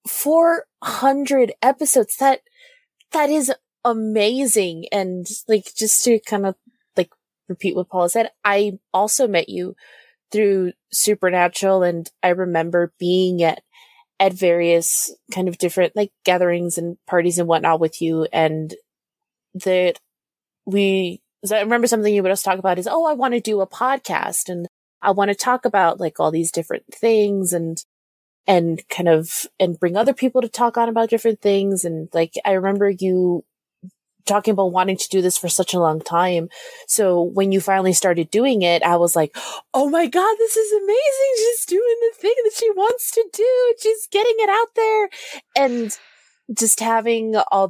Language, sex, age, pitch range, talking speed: English, female, 20-39, 175-250 Hz, 170 wpm